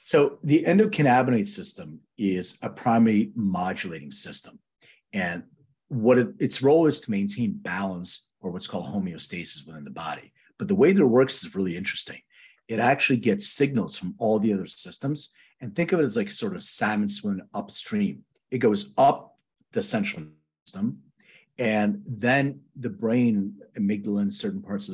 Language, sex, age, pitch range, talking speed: English, male, 40-59, 115-185 Hz, 165 wpm